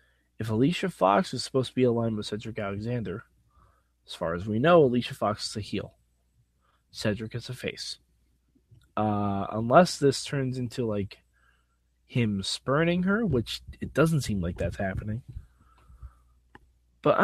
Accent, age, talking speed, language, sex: American, 20-39, 145 wpm, English, male